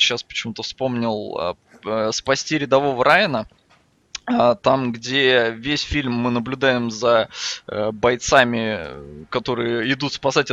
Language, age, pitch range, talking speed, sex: Russian, 20-39, 120-155 Hz, 95 wpm, male